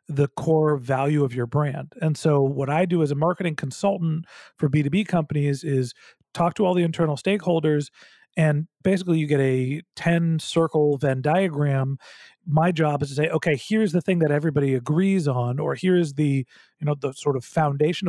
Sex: male